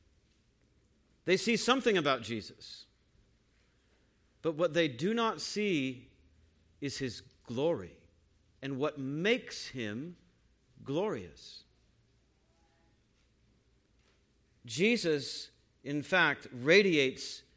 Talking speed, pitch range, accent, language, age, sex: 80 wpm, 115-145 Hz, American, English, 50-69, male